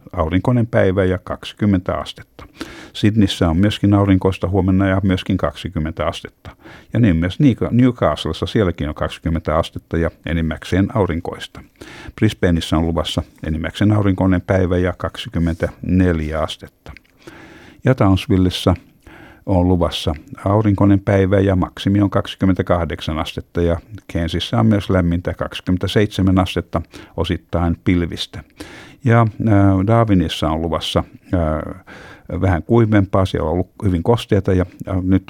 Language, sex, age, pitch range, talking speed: Finnish, male, 60-79, 85-100 Hz, 115 wpm